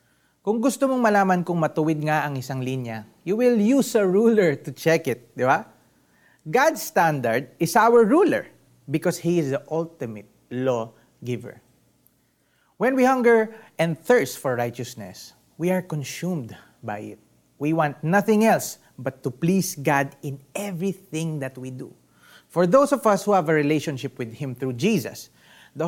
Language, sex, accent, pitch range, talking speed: Filipino, male, native, 135-205 Hz, 160 wpm